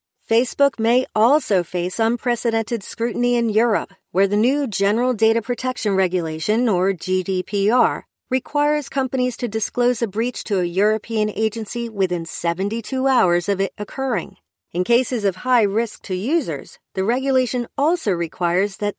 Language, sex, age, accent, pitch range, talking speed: English, female, 40-59, American, 190-245 Hz, 140 wpm